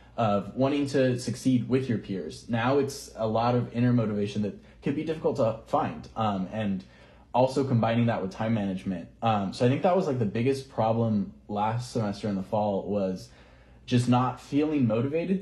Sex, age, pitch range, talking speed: male, 20-39, 100-125 Hz, 185 wpm